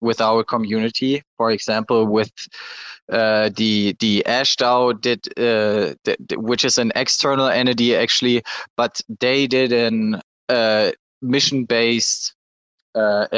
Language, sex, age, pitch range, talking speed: English, male, 20-39, 115-130 Hz, 125 wpm